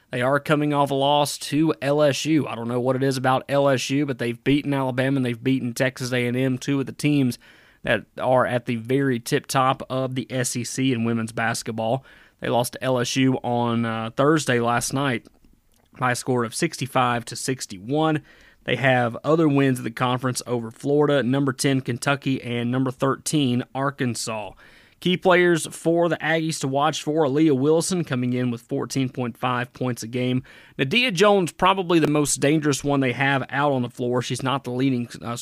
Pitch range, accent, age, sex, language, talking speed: 125-145 Hz, American, 30-49, male, English, 185 wpm